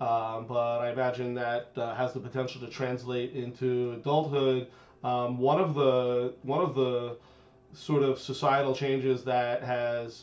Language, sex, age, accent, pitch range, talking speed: English, male, 30-49, American, 125-140 Hz, 155 wpm